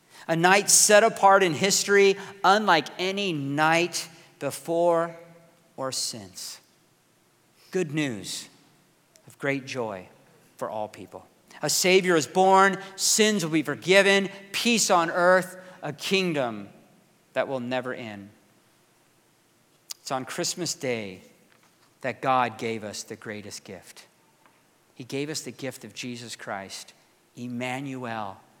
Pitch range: 135-200 Hz